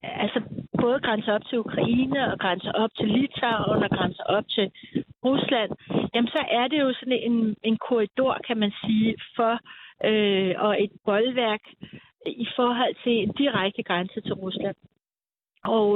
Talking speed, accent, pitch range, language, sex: 160 wpm, native, 200-245 Hz, Danish, female